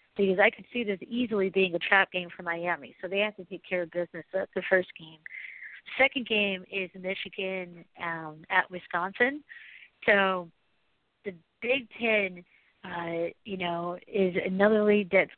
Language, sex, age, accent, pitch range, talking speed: English, female, 40-59, American, 185-220 Hz, 170 wpm